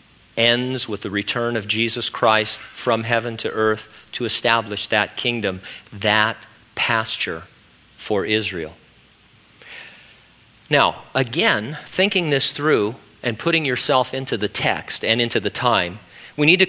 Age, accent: 50-69, American